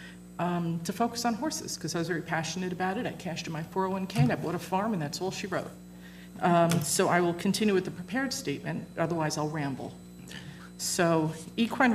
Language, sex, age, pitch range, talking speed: English, female, 40-59, 170-200 Hz, 200 wpm